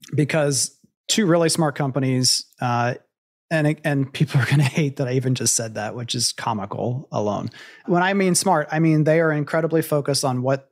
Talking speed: 195 wpm